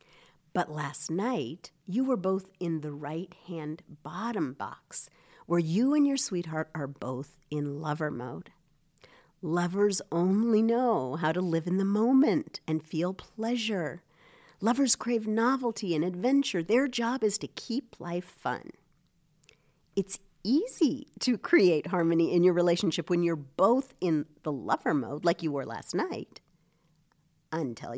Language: English